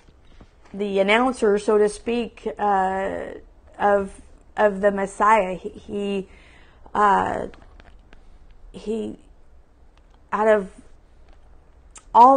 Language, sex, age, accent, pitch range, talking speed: English, female, 40-59, American, 190-225 Hz, 80 wpm